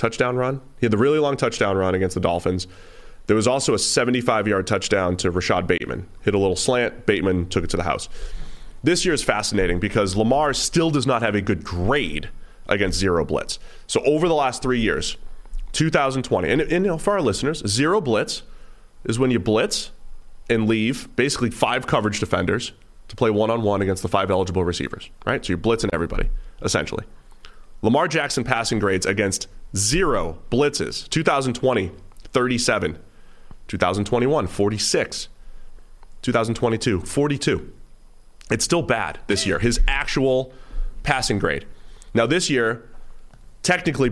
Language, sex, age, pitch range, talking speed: English, male, 30-49, 95-125 Hz, 155 wpm